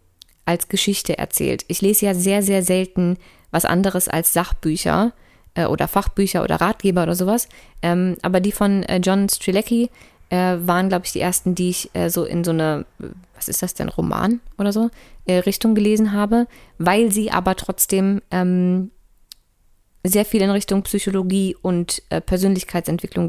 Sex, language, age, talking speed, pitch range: female, German, 20-39, 160 wpm, 180-205 Hz